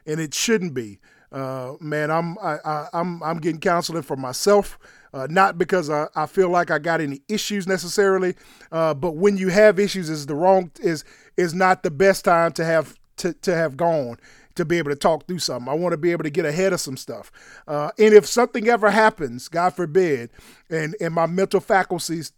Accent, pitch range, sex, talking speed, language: American, 150-195 Hz, male, 205 wpm, English